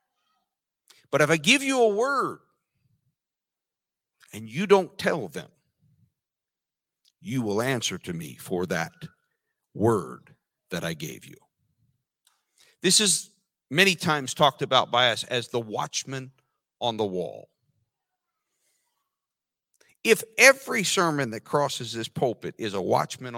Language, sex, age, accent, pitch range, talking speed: English, male, 50-69, American, 120-190 Hz, 125 wpm